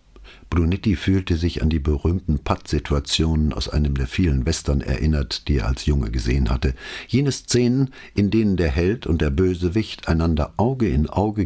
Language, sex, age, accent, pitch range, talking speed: English, male, 60-79, German, 75-100 Hz, 170 wpm